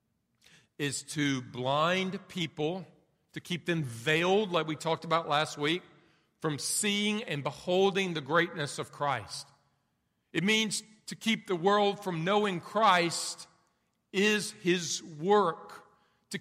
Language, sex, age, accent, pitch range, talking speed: English, male, 50-69, American, 135-185 Hz, 130 wpm